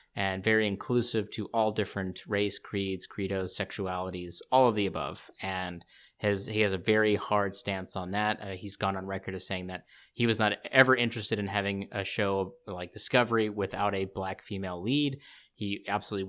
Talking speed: 180 wpm